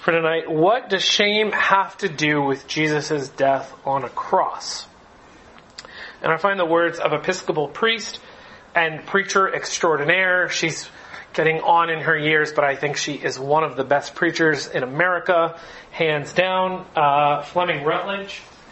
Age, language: 40-59, English